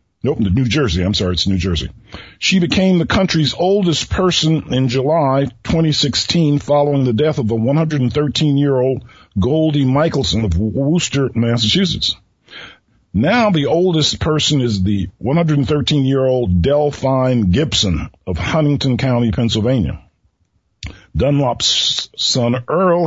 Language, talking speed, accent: English, 115 wpm, American